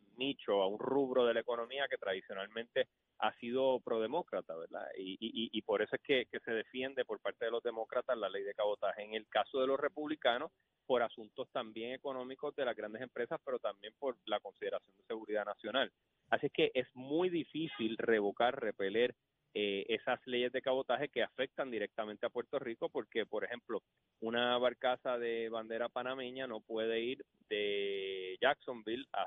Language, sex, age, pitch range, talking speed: Spanish, male, 30-49, 110-130 Hz, 170 wpm